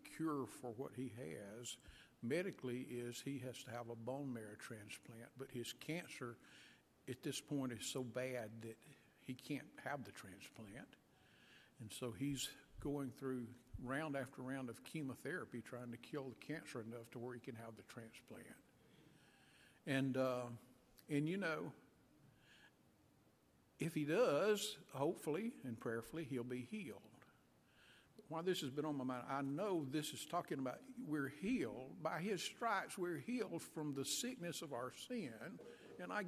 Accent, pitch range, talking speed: American, 120-155 Hz, 155 wpm